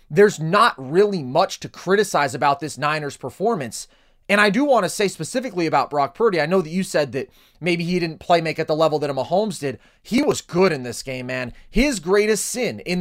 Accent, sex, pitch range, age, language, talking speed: American, male, 150-200 Hz, 30-49, English, 225 wpm